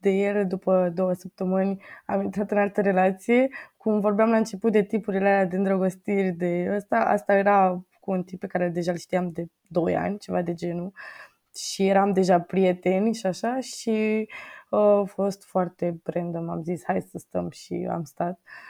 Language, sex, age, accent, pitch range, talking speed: Romanian, female, 20-39, native, 185-205 Hz, 185 wpm